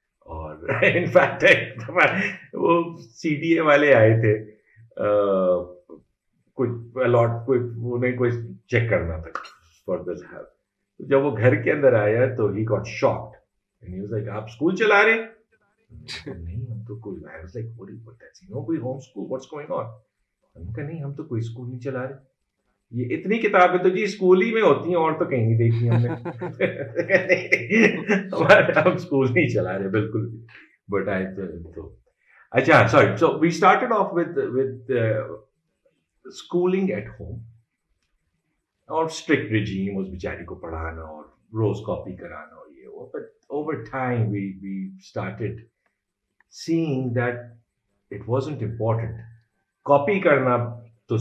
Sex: male